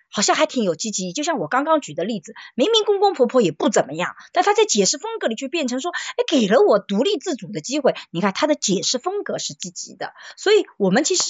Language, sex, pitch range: Chinese, female, 190-315 Hz